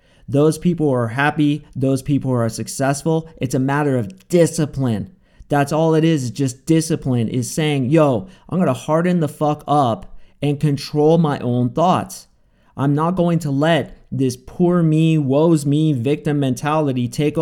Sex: male